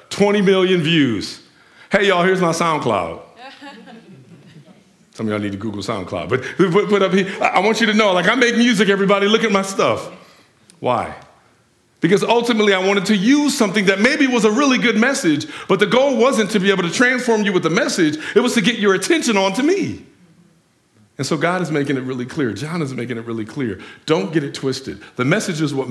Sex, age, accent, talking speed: male, 50-69, American, 210 wpm